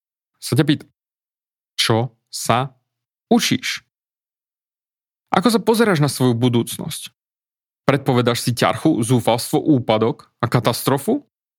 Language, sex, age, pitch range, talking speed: Slovak, male, 30-49, 120-150 Hz, 100 wpm